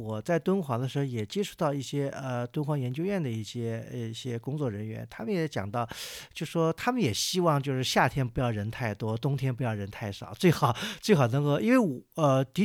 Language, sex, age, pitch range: Chinese, male, 50-69, 120-165 Hz